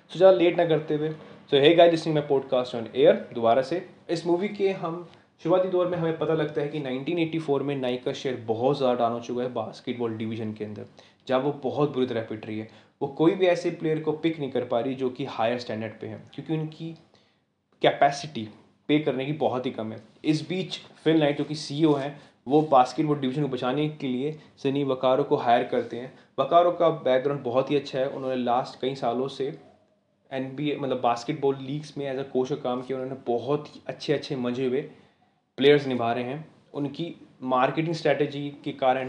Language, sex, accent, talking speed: Hindi, male, native, 210 wpm